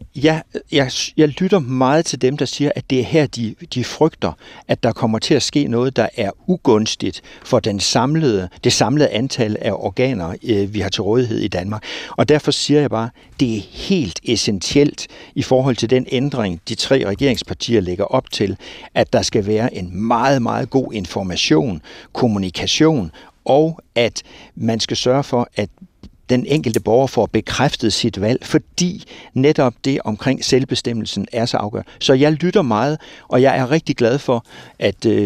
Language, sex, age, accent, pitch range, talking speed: Danish, male, 60-79, native, 110-140 Hz, 175 wpm